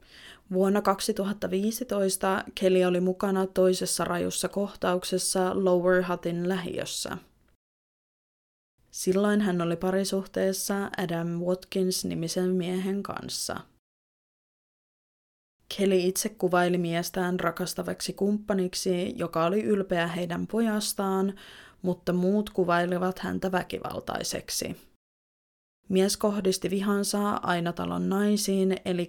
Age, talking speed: 20-39, 90 wpm